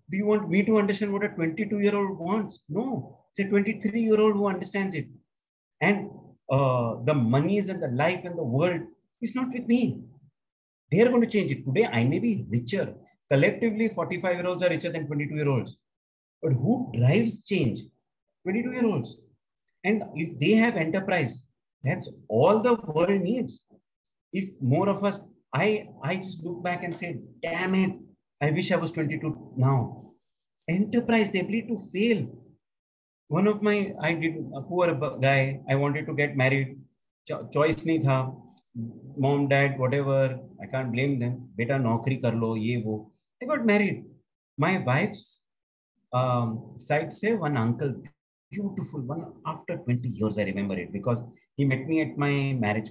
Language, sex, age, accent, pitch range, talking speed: Hindi, male, 50-69, native, 130-195 Hz, 160 wpm